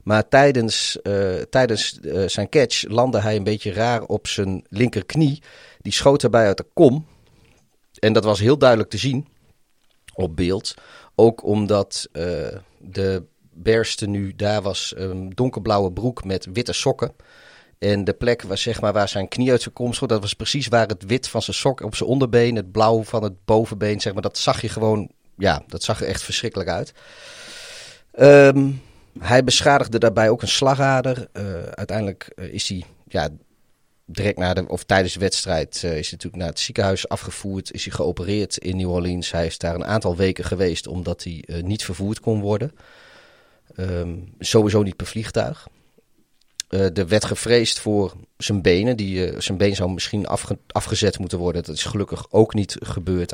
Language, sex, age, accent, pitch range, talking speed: Dutch, male, 30-49, Dutch, 95-115 Hz, 180 wpm